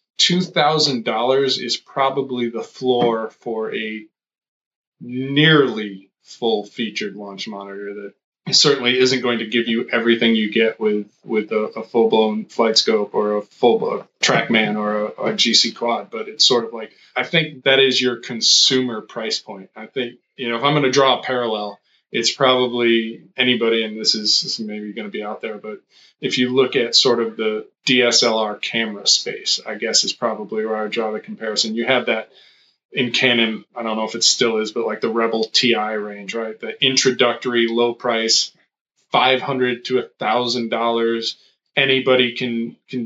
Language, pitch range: English, 110-125 Hz